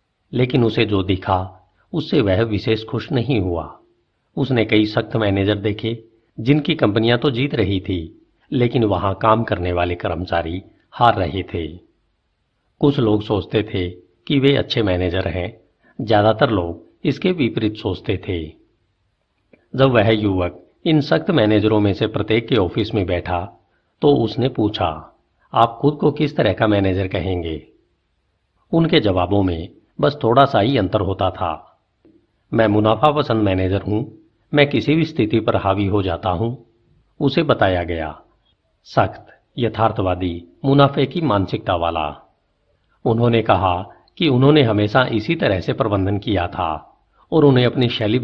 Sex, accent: male, native